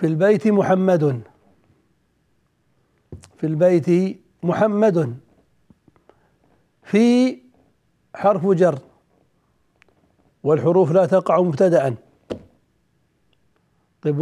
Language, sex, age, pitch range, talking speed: Arabic, male, 60-79, 160-200 Hz, 60 wpm